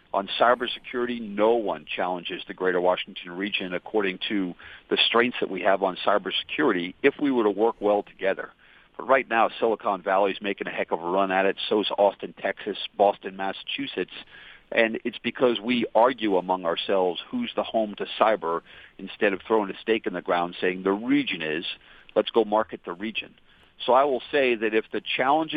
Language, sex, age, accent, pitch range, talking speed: English, male, 50-69, American, 95-125 Hz, 190 wpm